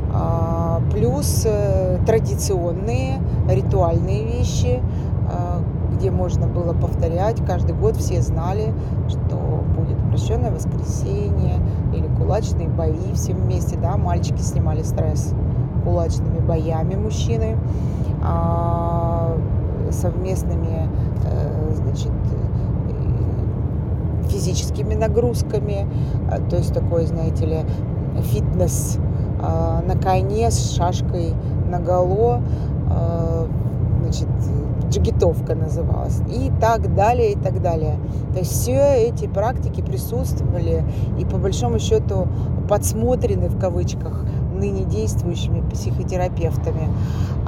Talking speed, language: 85 wpm, Russian